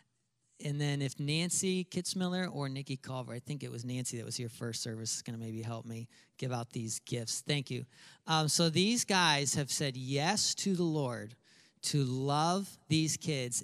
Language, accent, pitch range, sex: English, American, 130-170 Hz, male